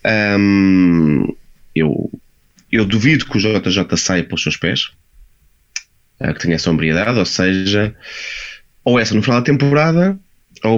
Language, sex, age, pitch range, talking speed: Portuguese, male, 20-39, 95-120 Hz, 140 wpm